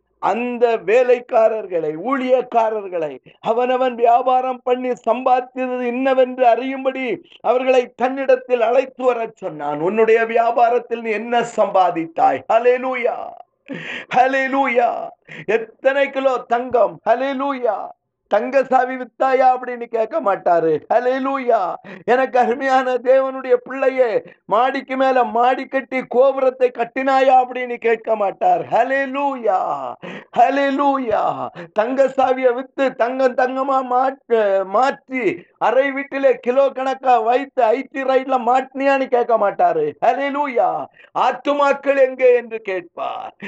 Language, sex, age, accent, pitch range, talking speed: Tamil, male, 50-69, native, 235-275 Hz, 75 wpm